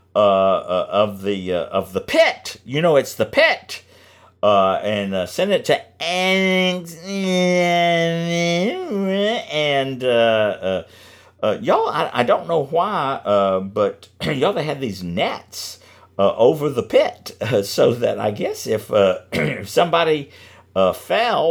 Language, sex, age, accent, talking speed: English, male, 50-69, American, 140 wpm